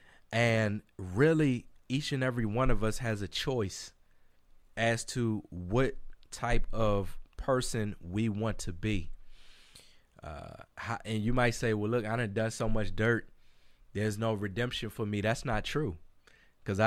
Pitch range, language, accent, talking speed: 100-125 Hz, English, American, 155 wpm